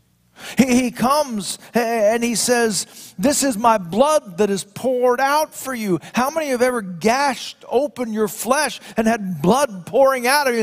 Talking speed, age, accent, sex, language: 170 wpm, 50-69, American, male, English